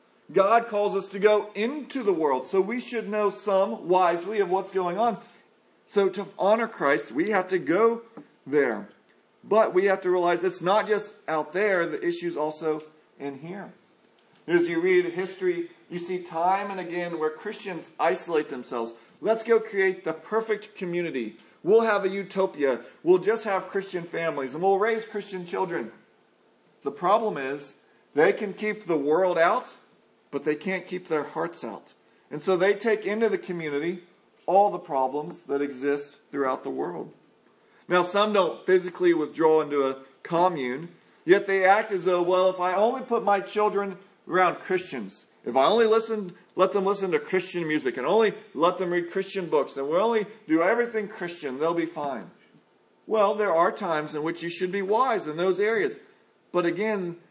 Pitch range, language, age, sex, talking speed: 165-210 Hz, English, 40-59, male, 175 wpm